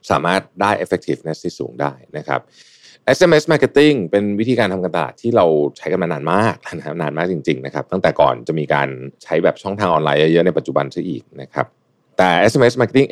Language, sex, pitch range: Thai, male, 70-115 Hz